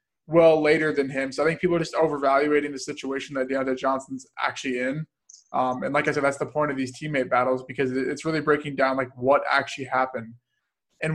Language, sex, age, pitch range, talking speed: English, male, 20-39, 135-155 Hz, 215 wpm